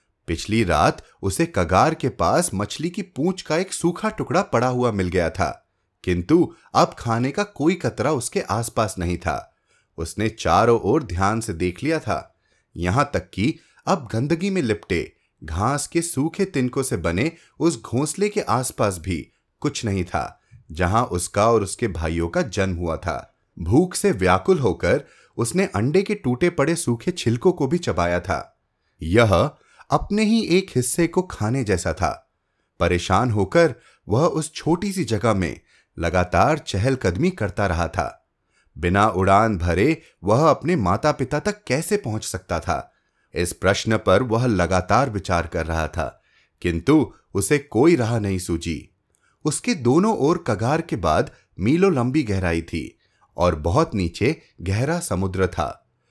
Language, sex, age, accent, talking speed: Hindi, male, 30-49, native, 135 wpm